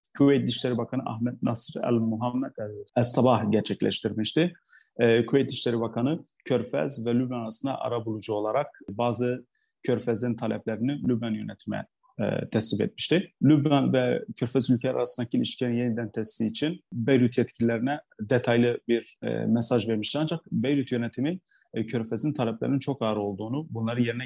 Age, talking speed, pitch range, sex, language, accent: 30-49, 130 wpm, 115-135 Hz, male, Turkish, native